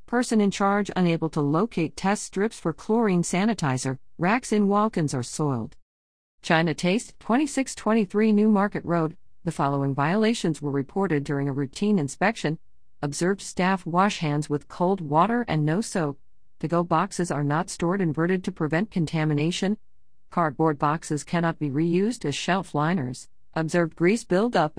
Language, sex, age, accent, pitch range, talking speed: English, female, 50-69, American, 150-200 Hz, 150 wpm